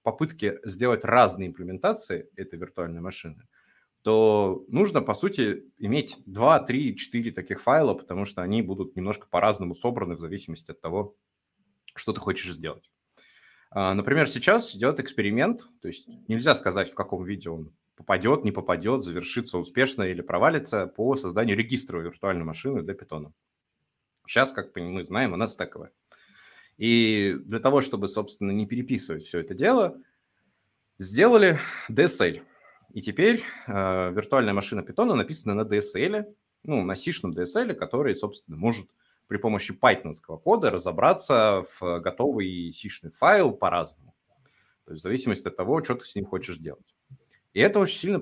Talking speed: 145 wpm